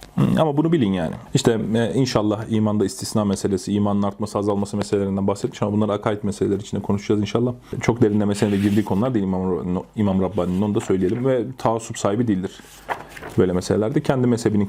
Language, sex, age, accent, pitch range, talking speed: Turkish, male, 30-49, native, 100-130 Hz, 170 wpm